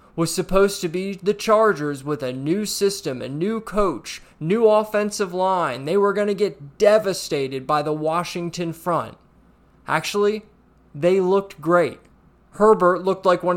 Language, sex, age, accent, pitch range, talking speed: English, male, 30-49, American, 155-195 Hz, 150 wpm